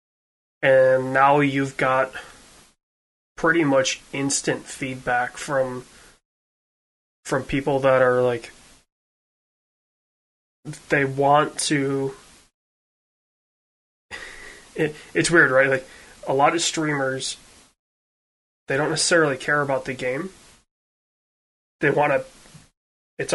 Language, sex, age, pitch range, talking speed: English, male, 20-39, 125-140 Hz, 95 wpm